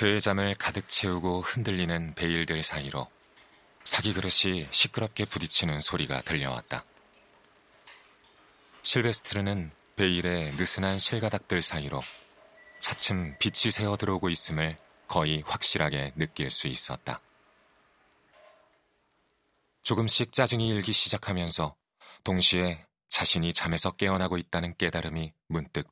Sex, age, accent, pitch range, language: male, 30-49, native, 80-100 Hz, Korean